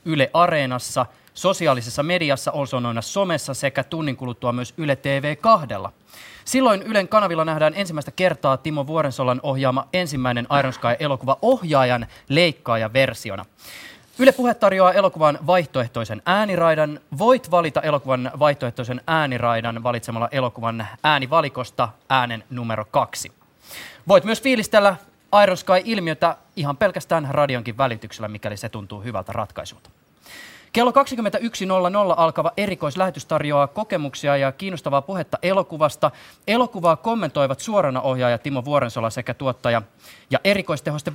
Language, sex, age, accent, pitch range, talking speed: Finnish, male, 20-39, native, 125-180 Hz, 110 wpm